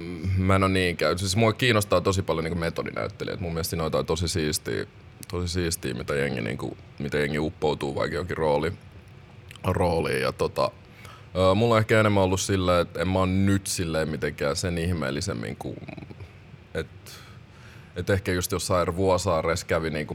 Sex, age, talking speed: male, 20-39, 135 wpm